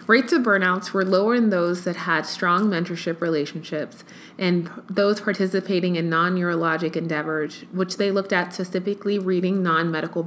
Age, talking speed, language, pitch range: 20-39, 145 wpm, English, 170-205 Hz